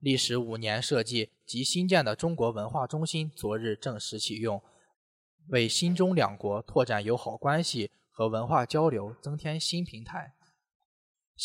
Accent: native